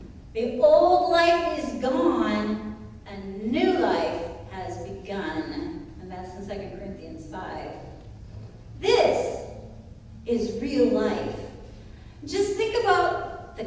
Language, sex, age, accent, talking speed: English, female, 40-59, American, 105 wpm